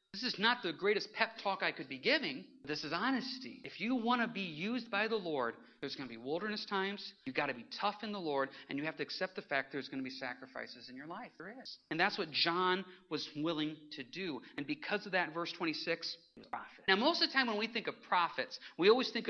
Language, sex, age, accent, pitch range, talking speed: English, male, 40-59, American, 185-270 Hz, 265 wpm